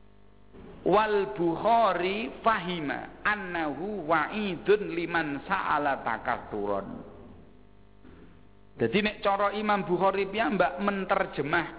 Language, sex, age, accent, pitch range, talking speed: Indonesian, male, 50-69, native, 135-210 Hz, 85 wpm